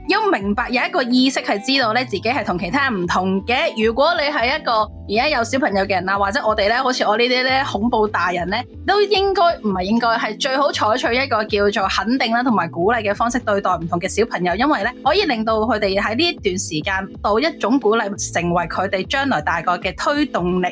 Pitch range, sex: 210-285 Hz, female